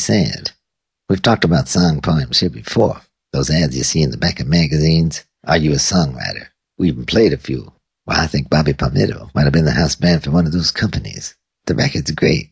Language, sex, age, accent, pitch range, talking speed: English, male, 50-69, American, 75-95 Hz, 215 wpm